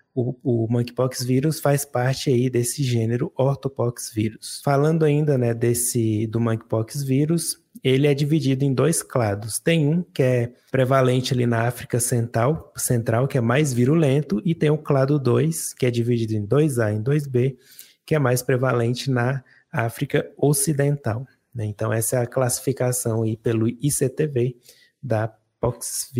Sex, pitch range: male, 120-145 Hz